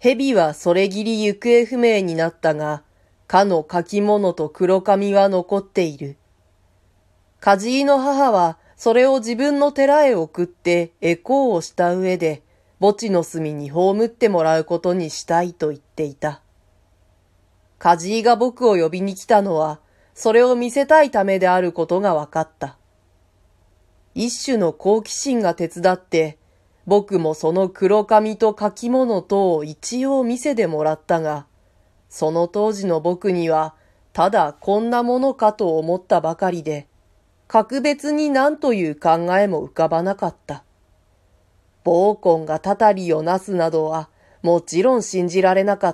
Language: Japanese